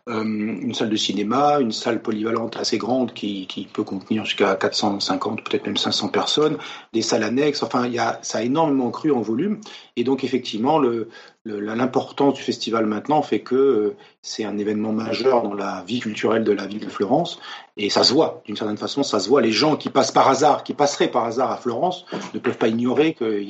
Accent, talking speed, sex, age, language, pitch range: French, 215 wpm, male, 40-59, French, 105-140 Hz